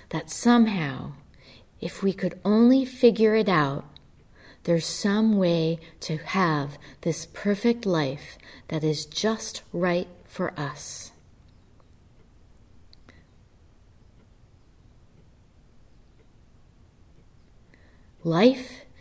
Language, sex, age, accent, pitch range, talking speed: English, female, 30-49, American, 130-205 Hz, 75 wpm